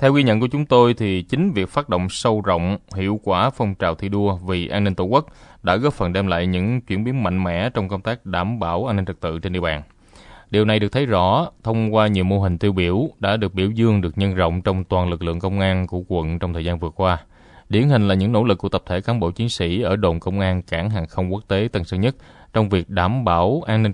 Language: Vietnamese